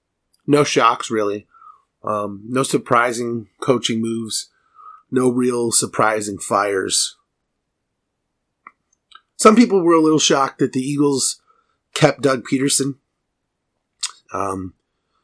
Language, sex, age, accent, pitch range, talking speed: English, male, 30-49, American, 110-140 Hz, 100 wpm